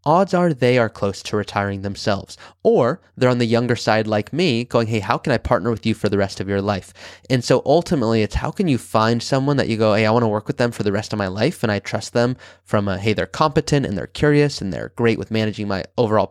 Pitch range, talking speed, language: 105-130 Hz, 270 wpm, English